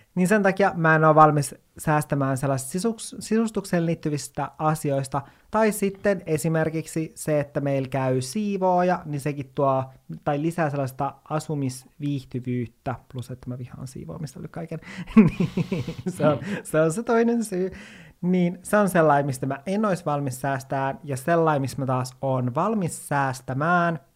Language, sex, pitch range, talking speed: Finnish, male, 130-175 Hz, 140 wpm